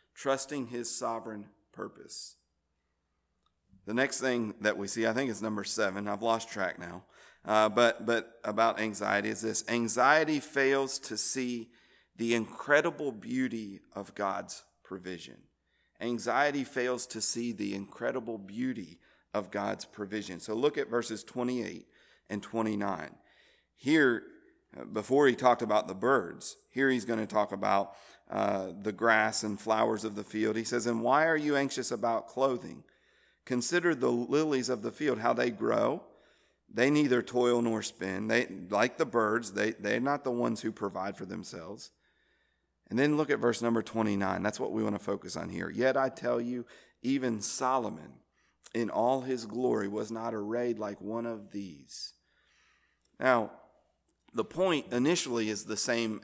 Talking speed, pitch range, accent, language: 160 wpm, 105-125 Hz, American, English